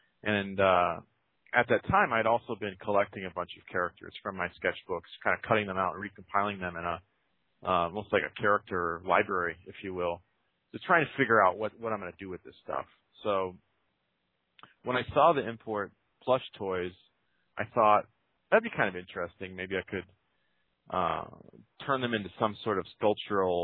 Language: English